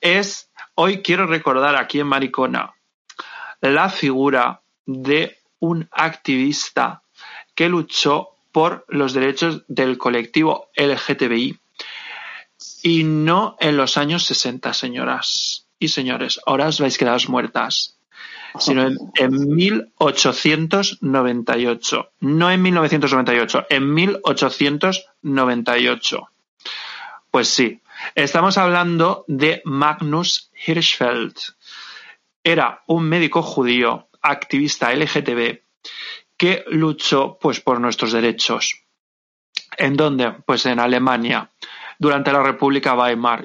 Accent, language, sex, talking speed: Spanish, Spanish, male, 100 wpm